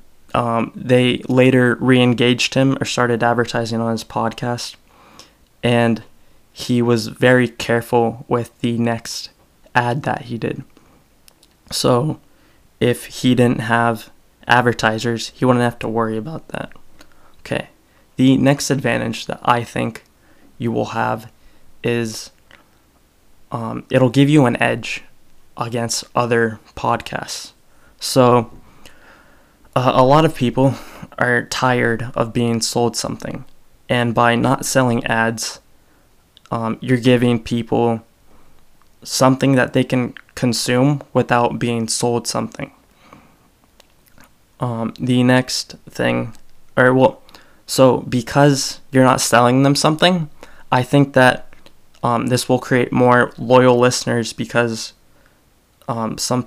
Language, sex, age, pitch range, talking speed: English, male, 20-39, 115-130 Hz, 120 wpm